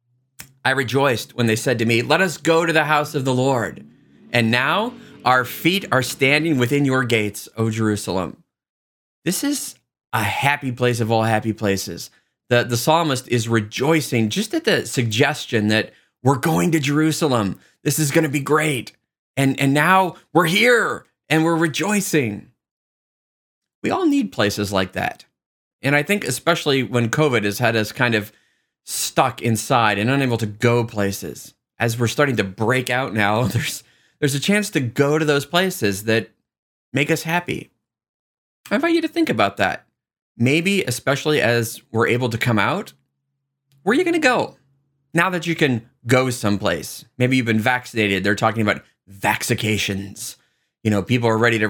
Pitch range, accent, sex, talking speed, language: 110-150 Hz, American, male, 175 wpm, English